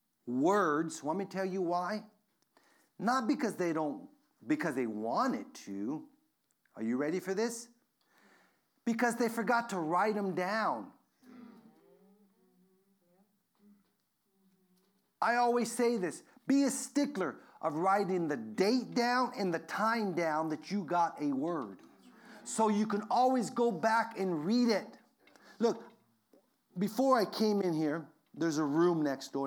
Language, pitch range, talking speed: English, 175-240 Hz, 140 wpm